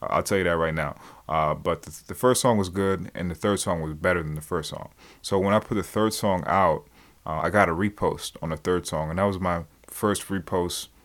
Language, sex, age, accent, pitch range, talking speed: English, male, 20-39, American, 90-100 Hz, 255 wpm